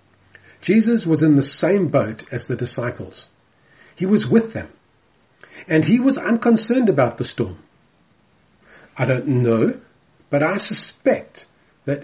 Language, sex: English, male